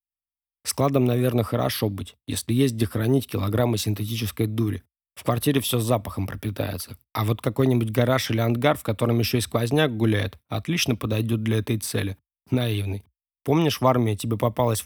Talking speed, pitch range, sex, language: 160 wpm, 105-125 Hz, male, Russian